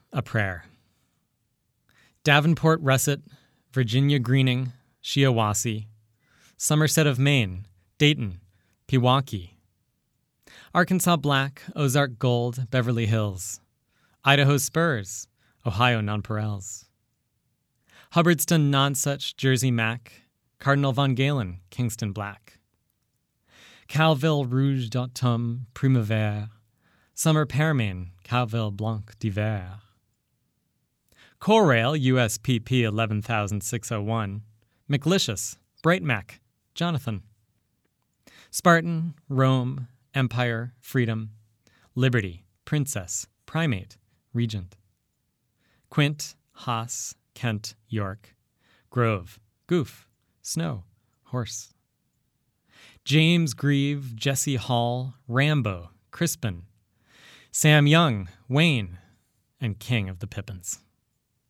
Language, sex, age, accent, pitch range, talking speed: English, male, 20-39, American, 110-140 Hz, 75 wpm